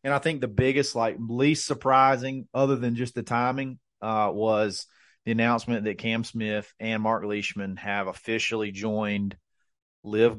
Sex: male